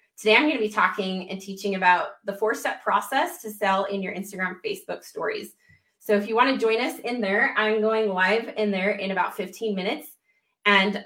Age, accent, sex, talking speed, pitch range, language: 20-39, American, female, 205 wpm, 195-230 Hz, English